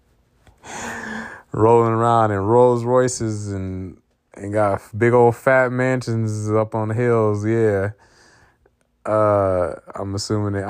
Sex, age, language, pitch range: male, 30-49, English, 90-110 Hz